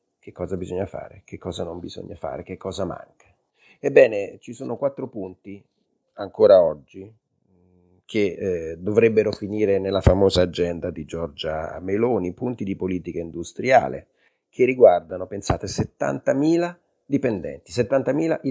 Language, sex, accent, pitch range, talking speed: Italian, male, native, 90-140 Hz, 125 wpm